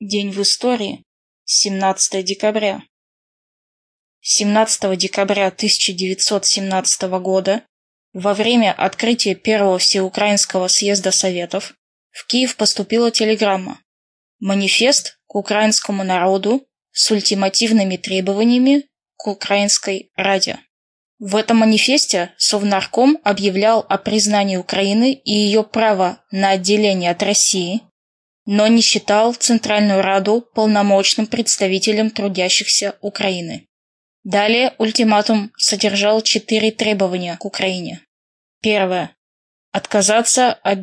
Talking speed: 95 wpm